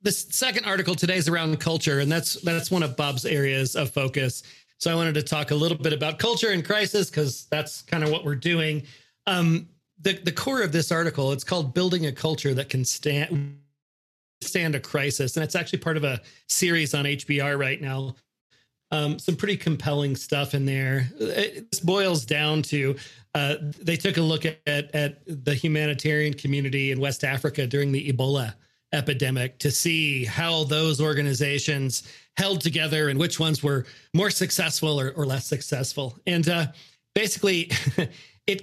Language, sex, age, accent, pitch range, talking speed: English, male, 40-59, American, 140-165 Hz, 175 wpm